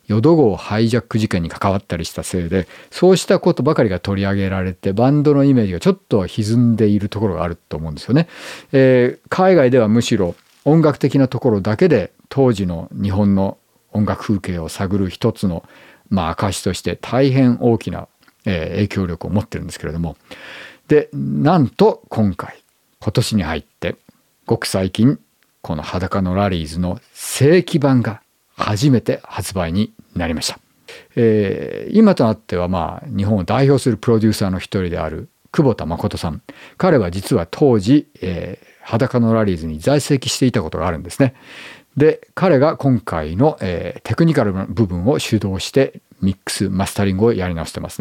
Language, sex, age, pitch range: Japanese, male, 50-69, 95-135 Hz